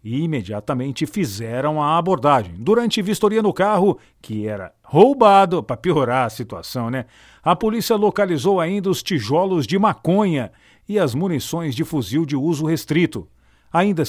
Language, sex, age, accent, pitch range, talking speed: Portuguese, male, 50-69, Brazilian, 130-195 Hz, 150 wpm